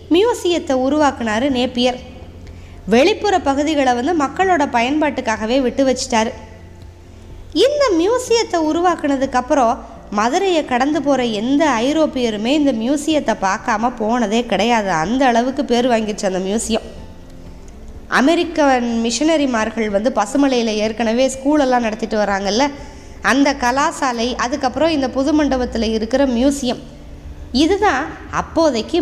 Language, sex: Tamil, female